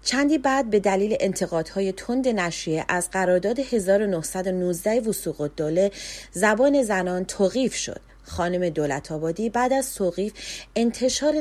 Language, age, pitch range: Persian, 30-49, 175-245 Hz